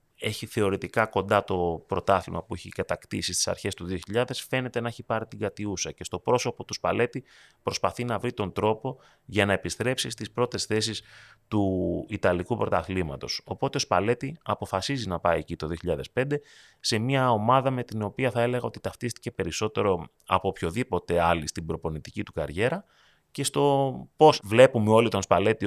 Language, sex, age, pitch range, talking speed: Greek, male, 30-49, 85-120 Hz, 165 wpm